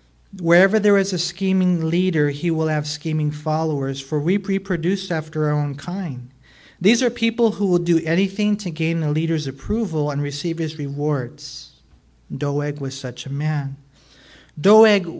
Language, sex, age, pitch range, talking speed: English, male, 40-59, 145-185 Hz, 160 wpm